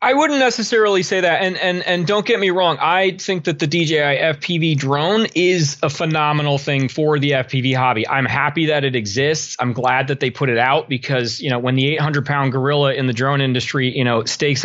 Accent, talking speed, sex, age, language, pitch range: American, 220 wpm, male, 30-49, English, 135-165 Hz